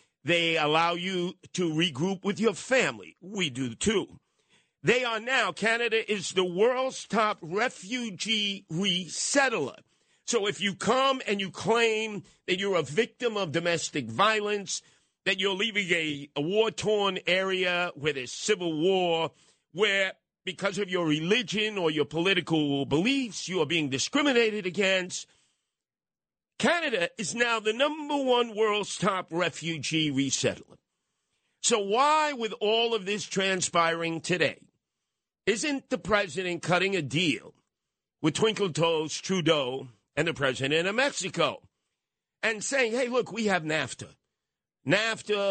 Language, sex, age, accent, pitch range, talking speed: English, male, 50-69, American, 160-215 Hz, 135 wpm